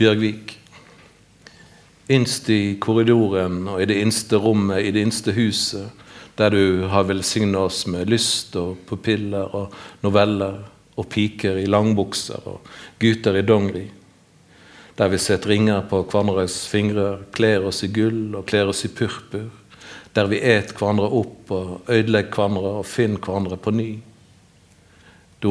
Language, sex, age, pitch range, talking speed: English, male, 50-69, 100-110 Hz, 140 wpm